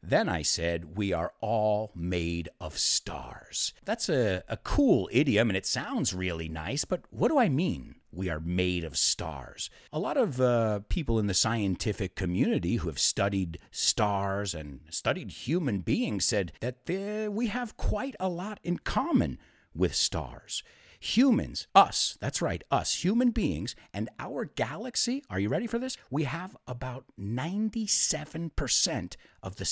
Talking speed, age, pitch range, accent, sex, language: 155 wpm, 50-69, 95-155 Hz, American, male, English